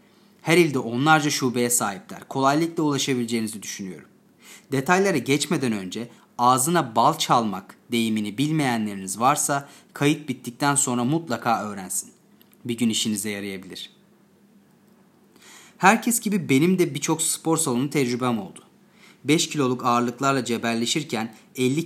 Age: 30-49